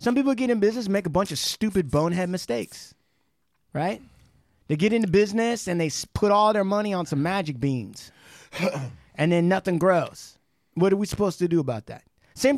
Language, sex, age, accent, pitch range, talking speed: English, male, 30-49, American, 155-250 Hz, 195 wpm